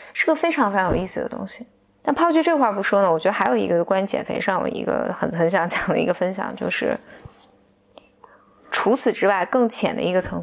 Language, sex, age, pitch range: Chinese, female, 20-39, 185-235 Hz